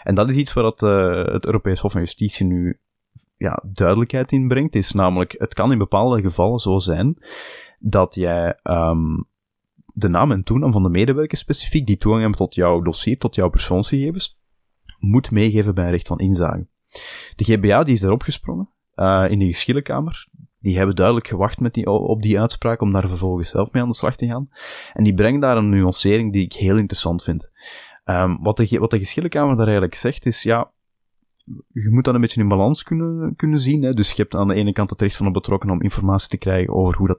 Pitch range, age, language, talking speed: 95-120 Hz, 20-39, Dutch, 215 wpm